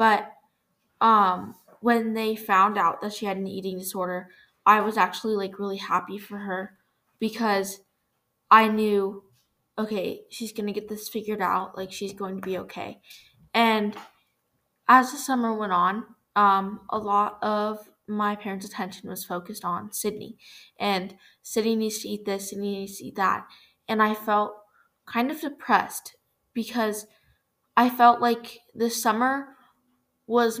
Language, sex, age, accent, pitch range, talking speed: English, female, 10-29, American, 195-225 Hz, 155 wpm